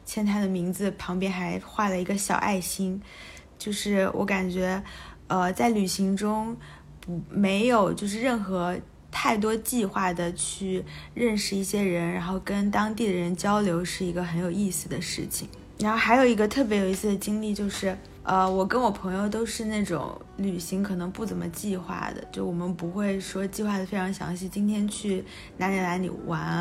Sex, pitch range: female, 180-205 Hz